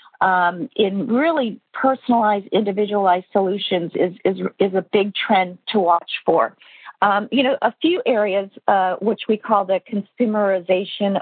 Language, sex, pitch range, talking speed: English, female, 195-225 Hz, 145 wpm